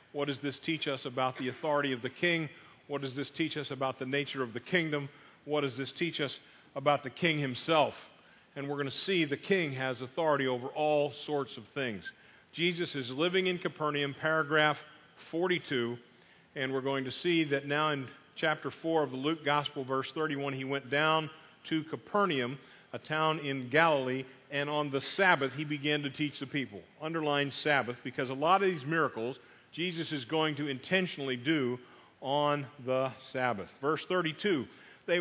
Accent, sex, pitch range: American, male, 135-170 Hz